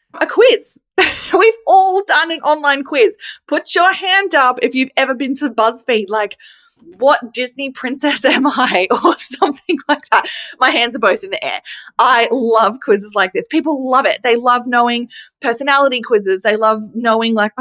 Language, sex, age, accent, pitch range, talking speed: English, female, 20-39, Australian, 215-285 Hz, 175 wpm